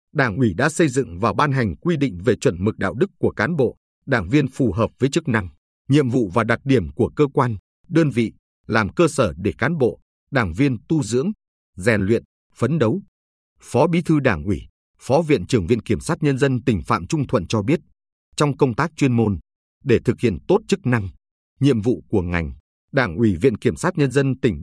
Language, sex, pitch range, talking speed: Vietnamese, male, 100-145 Hz, 220 wpm